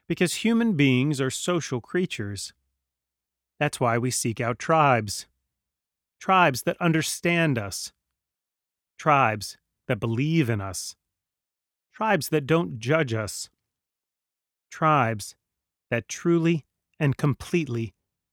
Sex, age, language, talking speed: male, 30-49, English, 100 wpm